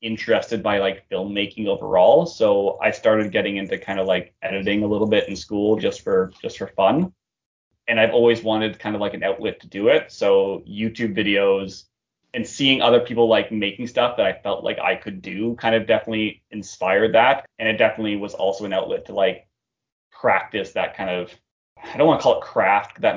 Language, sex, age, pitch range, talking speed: English, male, 20-39, 100-115 Hz, 205 wpm